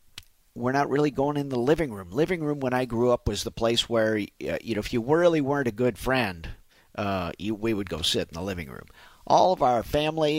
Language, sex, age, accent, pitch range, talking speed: English, male, 50-69, American, 100-130 Hz, 235 wpm